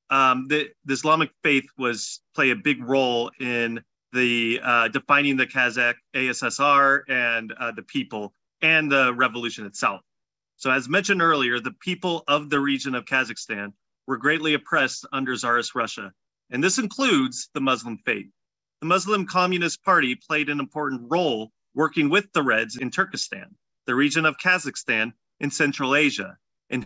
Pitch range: 120-155 Hz